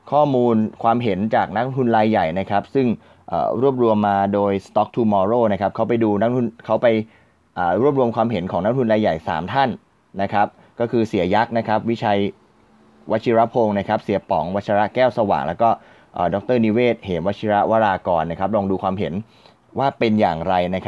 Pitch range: 100-120 Hz